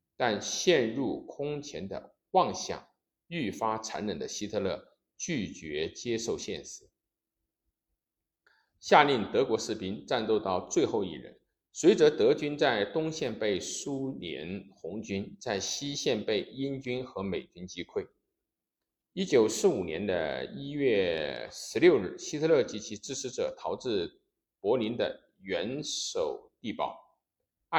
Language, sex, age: Chinese, male, 50-69